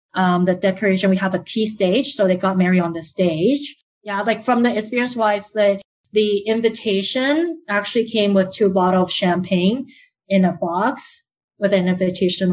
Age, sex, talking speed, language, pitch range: 30-49, female, 175 wpm, English, 185-220 Hz